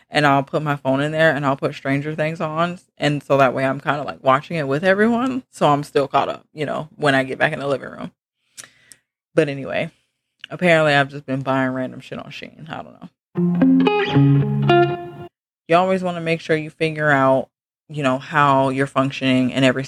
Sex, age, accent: female, 20-39, American